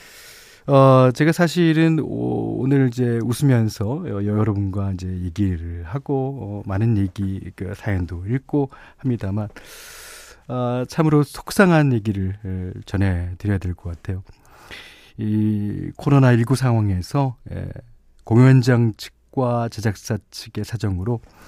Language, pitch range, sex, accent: Korean, 100-135 Hz, male, native